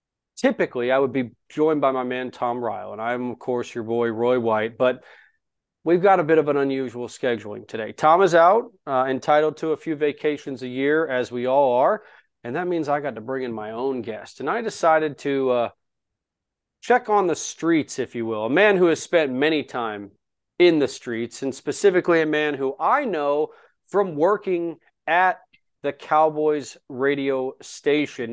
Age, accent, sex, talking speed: 30-49, American, male, 190 wpm